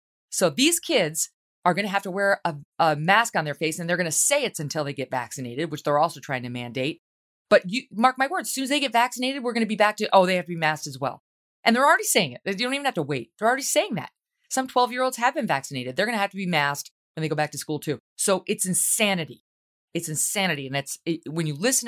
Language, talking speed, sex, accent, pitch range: English, 275 wpm, female, American, 150-230 Hz